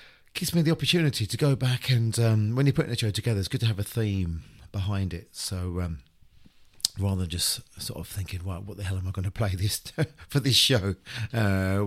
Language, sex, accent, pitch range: English, male, British, 95-125 Hz